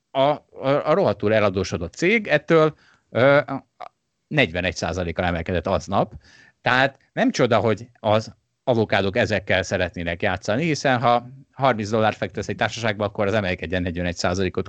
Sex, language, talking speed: male, Hungarian, 125 wpm